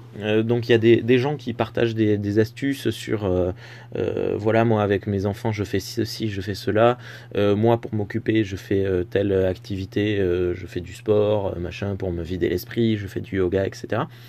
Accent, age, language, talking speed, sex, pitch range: French, 20-39, French, 215 wpm, male, 100-120 Hz